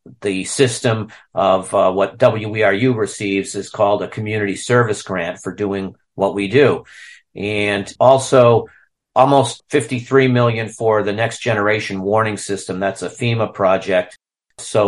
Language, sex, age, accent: English, male, 50-69, American